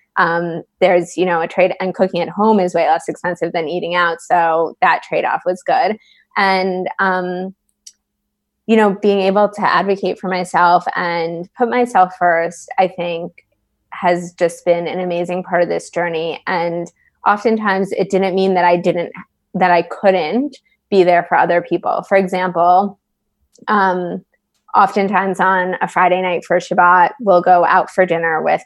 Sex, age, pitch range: female, 20-39, 175-195 Hz